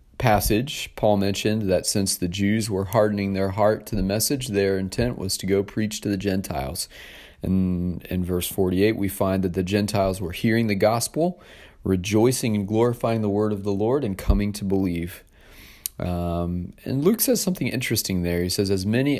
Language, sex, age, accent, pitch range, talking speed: English, male, 40-59, American, 90-105 Hz, 185 wpm